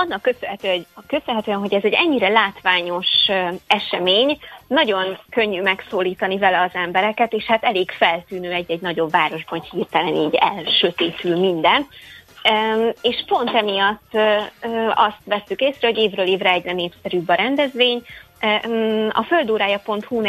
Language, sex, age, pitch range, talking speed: Hungarian, female, 20-39, 180-220 Hz, 120 wpm